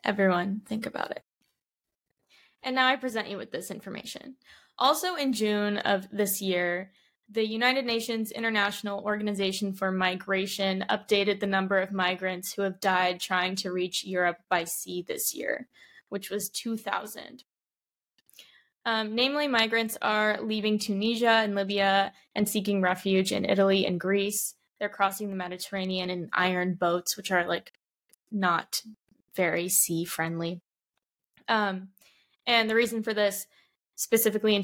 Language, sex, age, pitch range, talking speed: English, female, 20-39, 190-225 Hz, 140 wpm